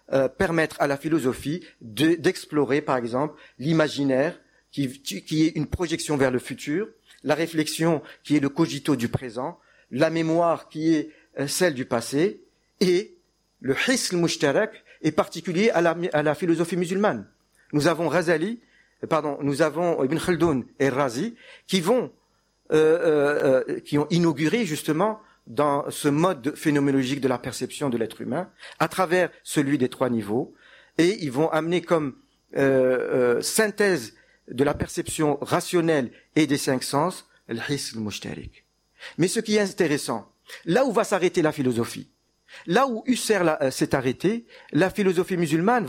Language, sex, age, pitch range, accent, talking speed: French, male, 50-69, 140-190 Hz, French, 155 wpm